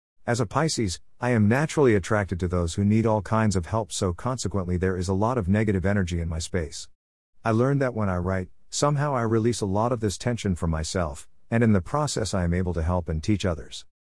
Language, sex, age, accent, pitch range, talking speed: English, male, 50-69, American, 85-115 Hz, 235 wpm